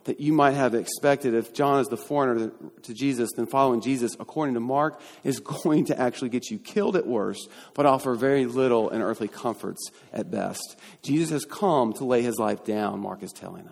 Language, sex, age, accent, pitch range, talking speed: English, male, 40-59, American, 125-180 Hz, 205 wpm